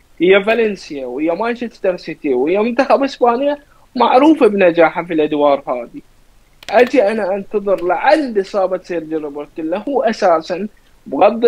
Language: Arabic